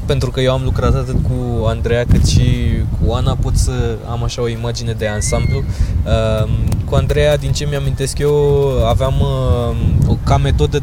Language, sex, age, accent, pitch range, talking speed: Romanian, male, 20-39, native, 110-140 Hz, 160 wpm